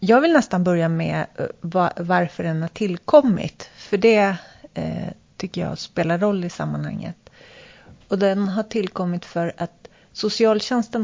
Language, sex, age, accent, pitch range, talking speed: Swedish, female, 40-59, native, 165-205 Hz, 130 wpm